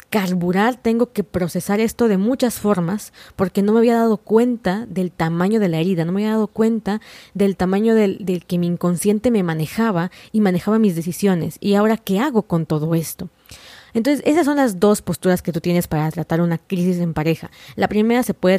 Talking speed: 205 wpm